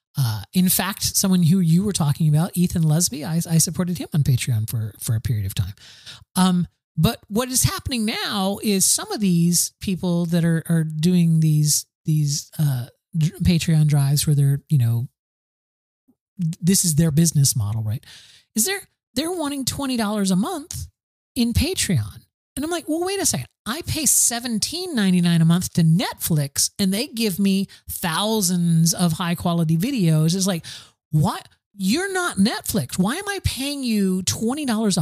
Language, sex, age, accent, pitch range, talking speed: English, male, 40-59, American, 150-200 Hz, 165 wpm